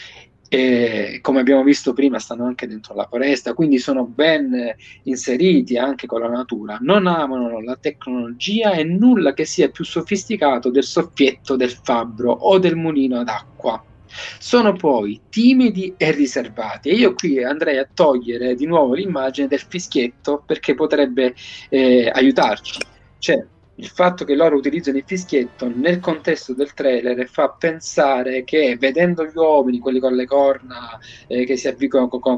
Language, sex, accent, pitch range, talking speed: Italian, male, native, 125-165 Hz, 160 wpm